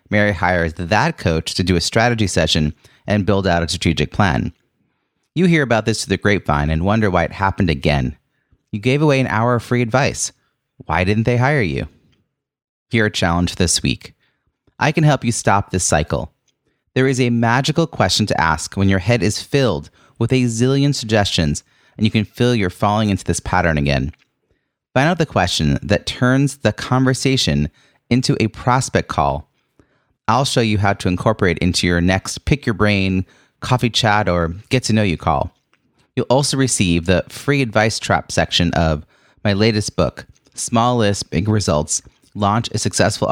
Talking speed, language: 175 wpm, English